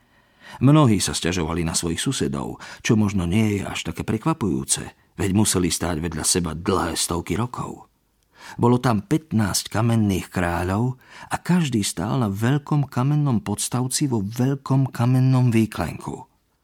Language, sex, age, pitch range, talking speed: Slovak, male, 50-69, 95-135 Hz, 135 wpm